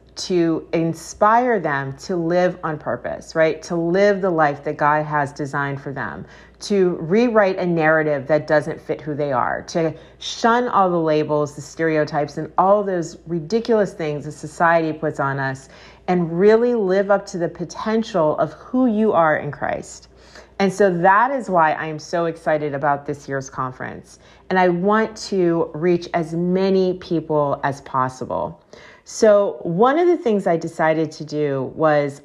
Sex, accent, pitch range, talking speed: female, American, 155-200 Hz, 170 wpm